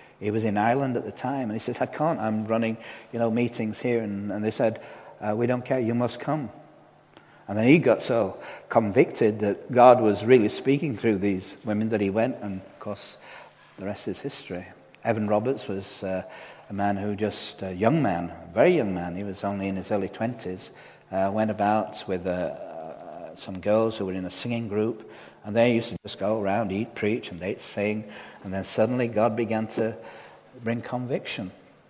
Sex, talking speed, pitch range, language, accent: male, 205 wpm, 100-115 Hz, English, British